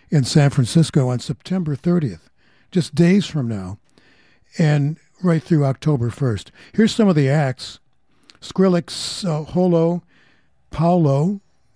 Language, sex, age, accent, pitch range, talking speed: English, male, 60-79, American, 135-175 Hz, 120 wpm